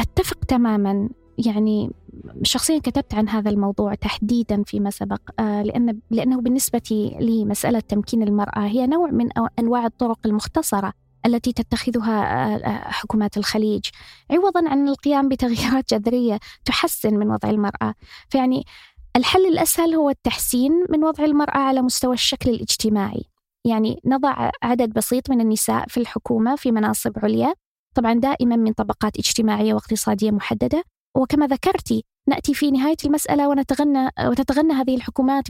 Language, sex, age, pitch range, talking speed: Arabic, female, 20-39, 215-275 Hz, 130 wpm